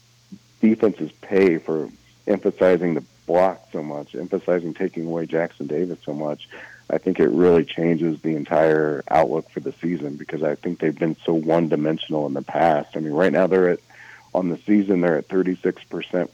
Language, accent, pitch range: English, American, 80-95 Hz